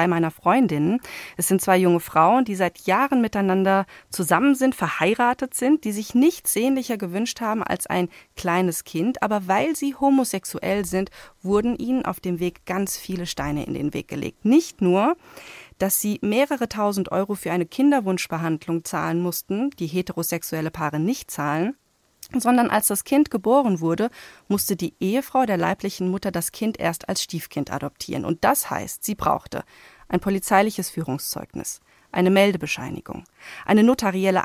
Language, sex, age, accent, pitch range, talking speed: German, female, 30-49, German, 175-235 Hz, 155 wpm